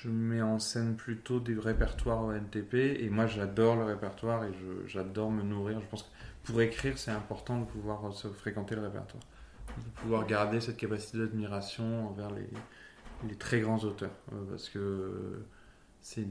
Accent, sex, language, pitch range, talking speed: French, male, French, 105-120 Hz, 170 wpm